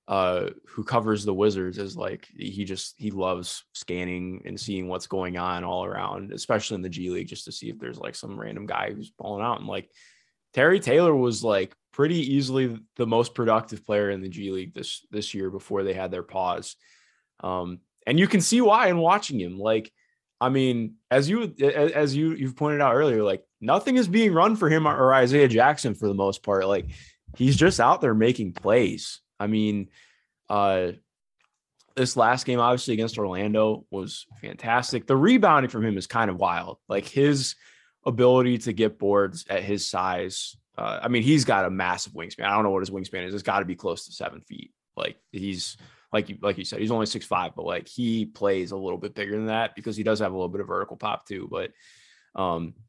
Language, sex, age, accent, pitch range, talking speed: English, male, 20-39, American, 95-130 Hz, 210 wpm